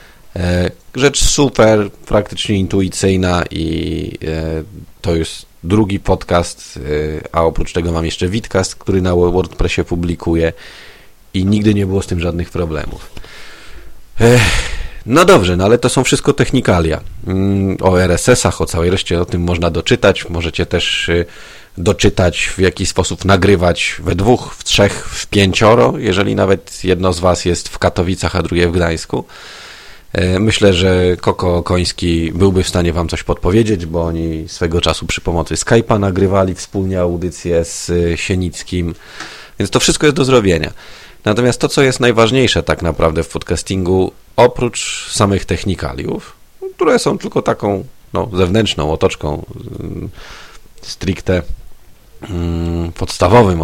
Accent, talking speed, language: native, 130 wpm, Polish